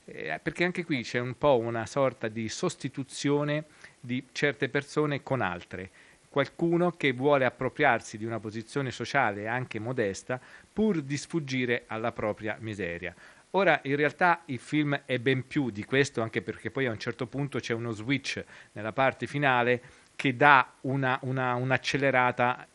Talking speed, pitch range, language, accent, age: 155 wpm, 110-140 Hz, Italian, native, 40-59